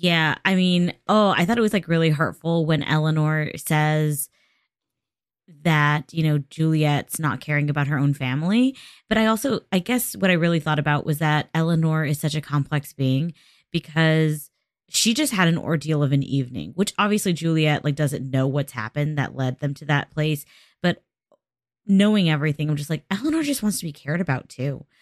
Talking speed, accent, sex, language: 190 wpm, American, female, English